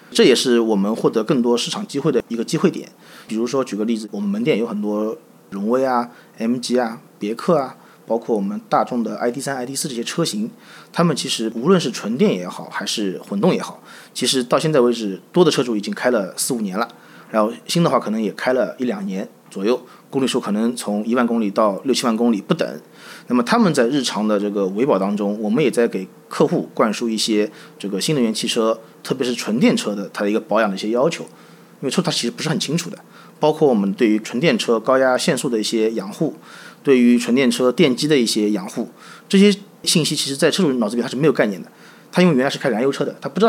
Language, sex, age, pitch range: Chinese, male, 30-49, 110-170 Hz